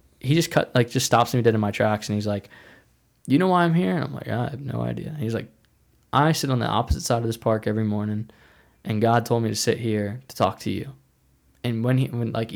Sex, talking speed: male, 270 wpm